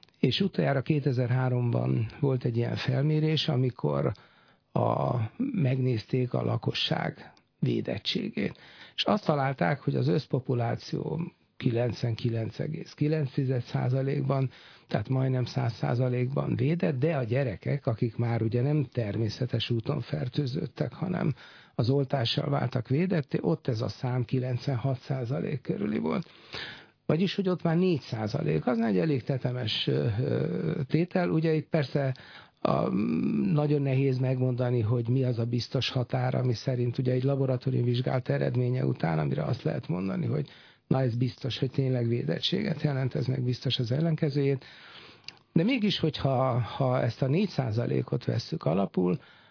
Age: 60-79